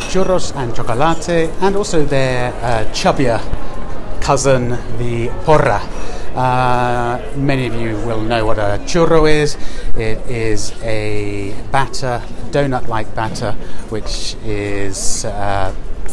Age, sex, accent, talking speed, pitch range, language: 30-49, male, British, 110 wpm, 115-150 Hz, English